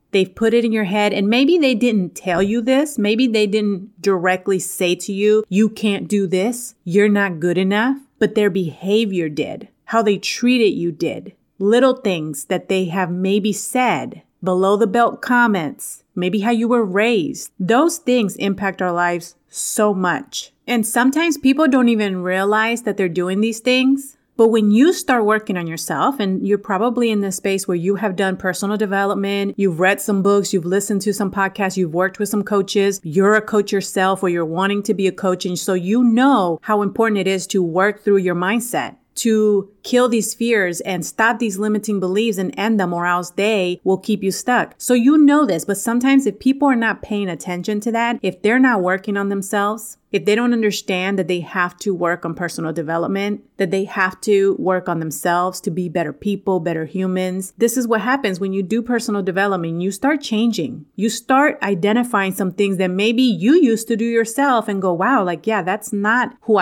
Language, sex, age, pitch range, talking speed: English, female, 30-49, 185-230 Hz, 200 wpm